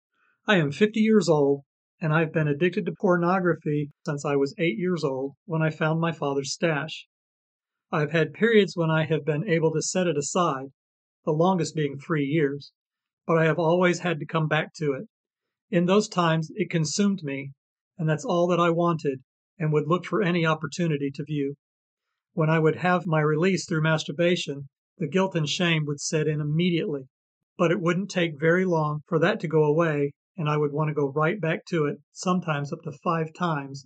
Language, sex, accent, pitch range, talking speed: English, male, American, 150-180 Hz, 200 wpm